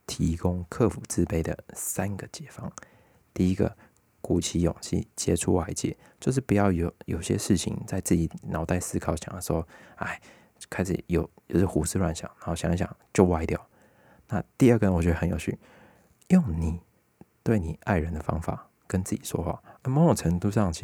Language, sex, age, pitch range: Chinese, male, 20-39, 85-105 Hz